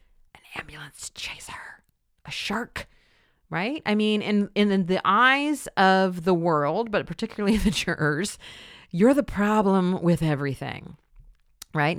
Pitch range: 155-220 Hz